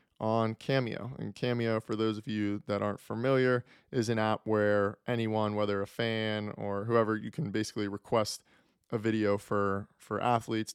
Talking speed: 165 wpm